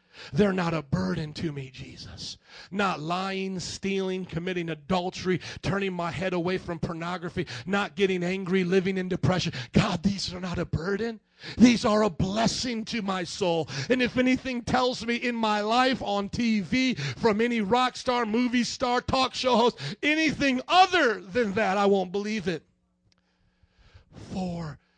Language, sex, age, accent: English, male, 40-59, American